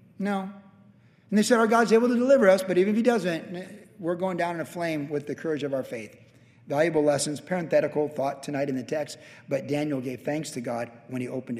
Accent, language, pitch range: American, English, 130-160 Hz